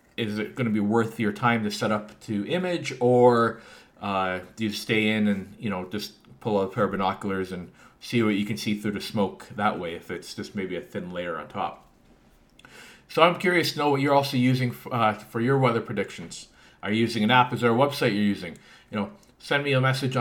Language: English